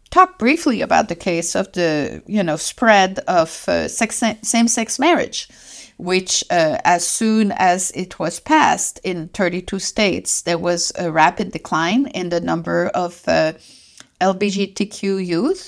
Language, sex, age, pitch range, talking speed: English, female, 50-69, 170-230 Hz, 145 wpm